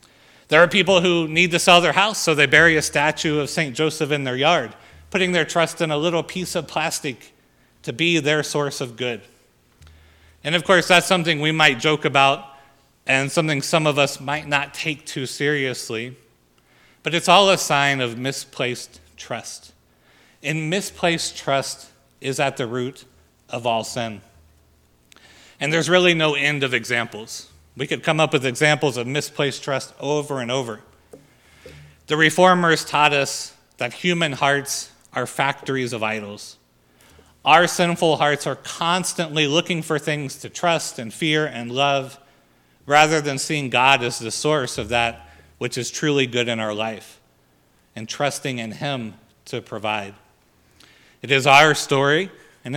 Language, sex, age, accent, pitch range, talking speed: English, male, 40-59, American, 120-155 Hz, 165 wpm